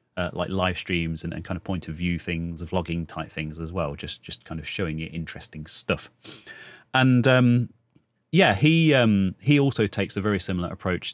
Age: 30-49